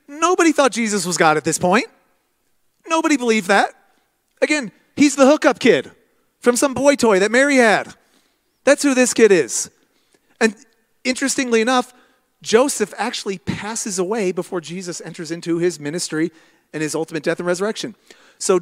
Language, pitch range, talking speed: English, 165-230 Hz, 155 wpm